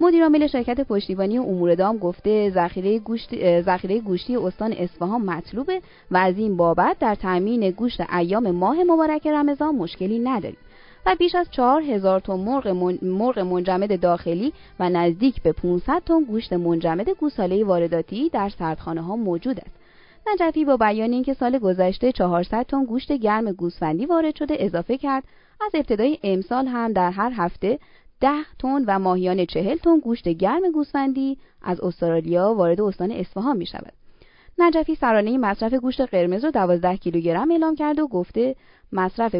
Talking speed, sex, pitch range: 150 wpm, female, 180-270 Hz